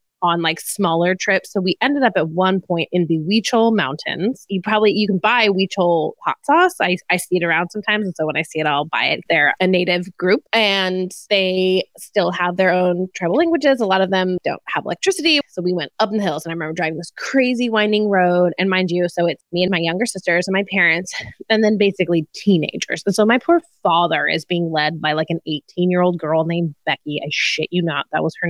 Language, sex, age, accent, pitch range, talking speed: English, female, 20-39, American, 175-230 Hz, 235 wpm